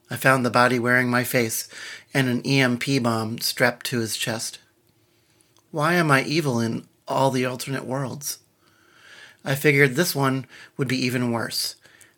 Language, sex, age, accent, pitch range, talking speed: English, male, 40-59, American, 120-135 Hz, 160 wpm